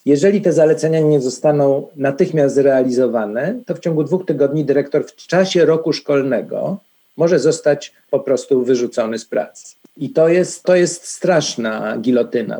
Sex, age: male, 50-69